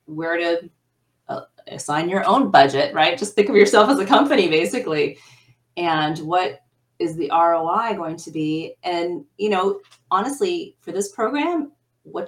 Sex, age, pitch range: female, 30-49, 145-195 Hz